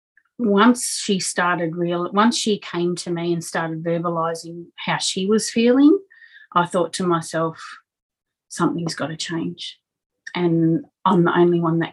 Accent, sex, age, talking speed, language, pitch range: Australian, female, 30-49, 150 wpm, English, 170-205 Hz